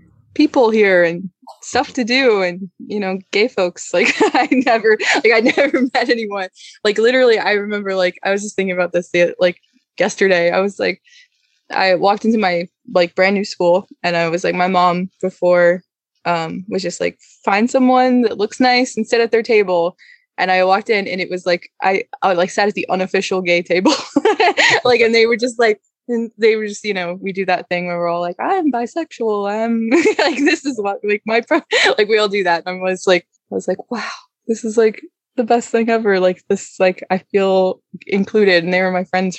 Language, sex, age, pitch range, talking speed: English, female, 20-39, 180-235 Hz, 215 wpm